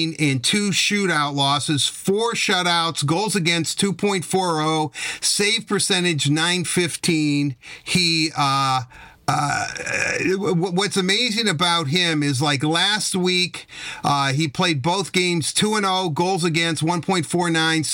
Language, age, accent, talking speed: English, 50-69, American, 105 wpm